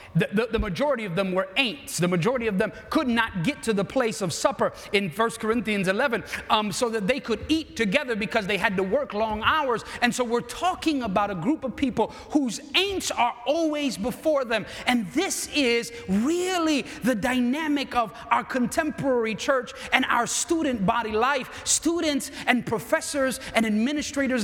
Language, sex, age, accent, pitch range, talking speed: English, male, 30-49, American, 190-270 Hz, 180 wpm